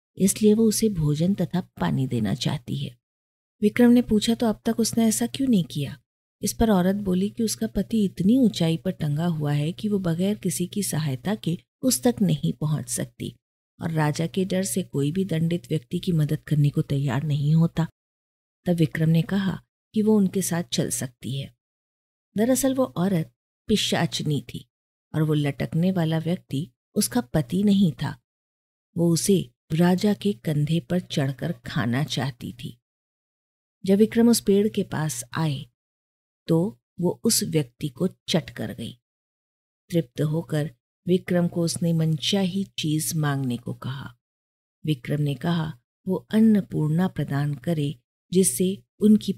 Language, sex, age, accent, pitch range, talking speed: Hindi, female, 50-69, native, 140-195 Hz, 160 wpm